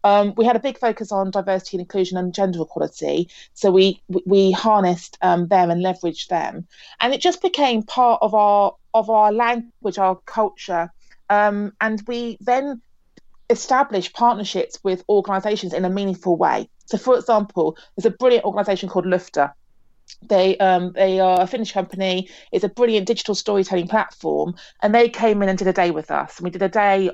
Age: 30-49